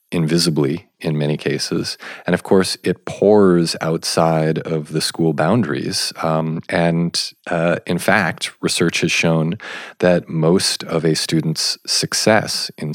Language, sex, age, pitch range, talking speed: English, male, 40-59, 75-90 Hz, 135 wpm